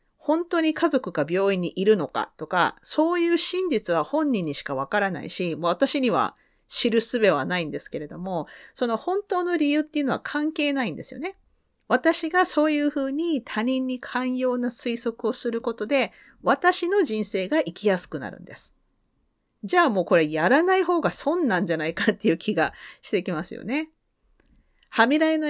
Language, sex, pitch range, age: Japanese, female, 175-285 Hz, 40-59